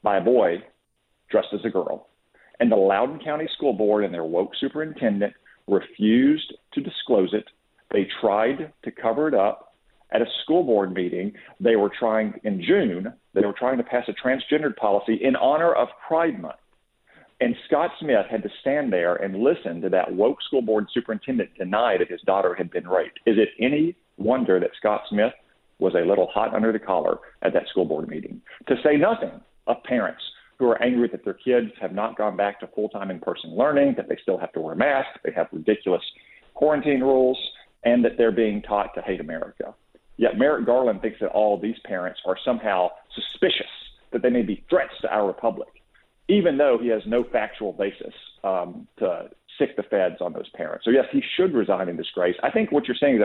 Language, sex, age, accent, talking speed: English, male, 50-69, American, 200 wpm